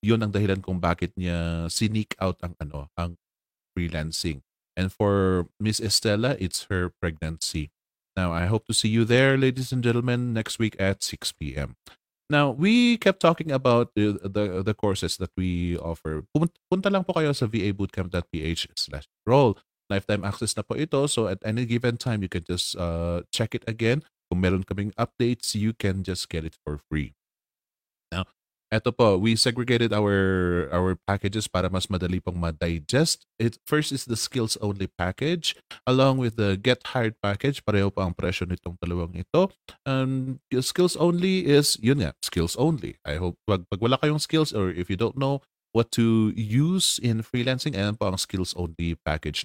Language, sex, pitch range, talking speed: English, male, 90-130 Hz, 165 wpm